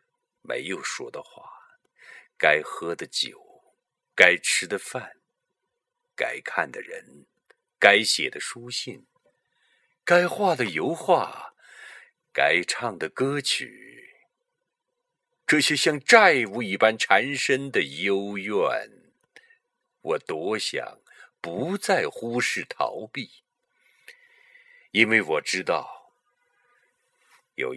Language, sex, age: Chinese, male, 50-69